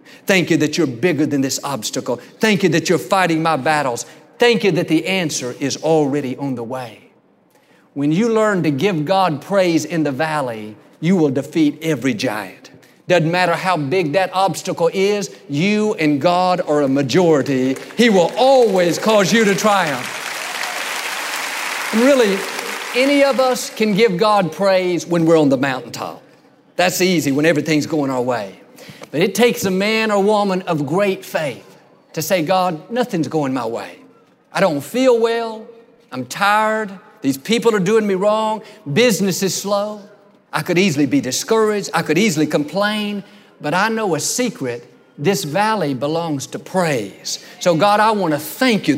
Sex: male